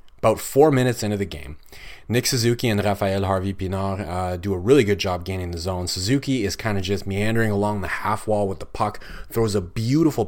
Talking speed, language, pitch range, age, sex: 210 wpm, English, 95-110 Hz, 30-49, male